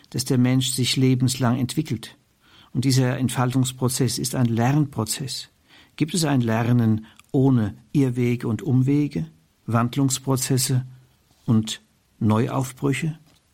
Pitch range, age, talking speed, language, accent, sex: 120-140 Hz, 50-69, 100 wpm, German, German, male